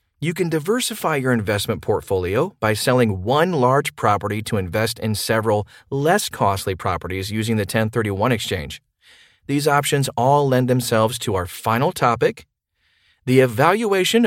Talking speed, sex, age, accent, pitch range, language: 140 wpm, male, 40-59, American, 105-135 Hz, English